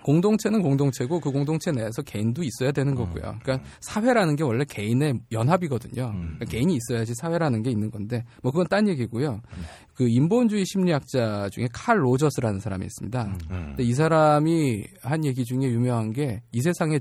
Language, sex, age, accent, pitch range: Korean, male, 20-39, native, 115-150 Hz